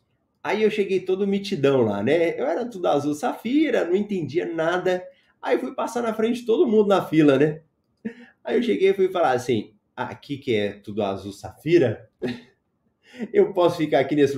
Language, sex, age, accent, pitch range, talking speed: Portuguese, male, 20-39, Brazilian, 130-195 Hz, 185 wpm